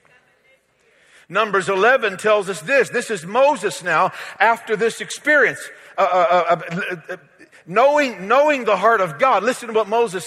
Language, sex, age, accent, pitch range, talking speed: English, male, 50-69, American, 170-255 Hz, 160 wpm